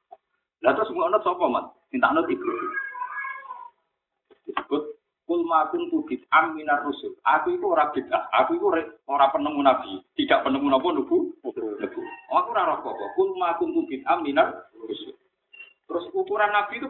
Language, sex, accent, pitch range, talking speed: Indonesian, male, native, 295-370 Hz, 140 wpm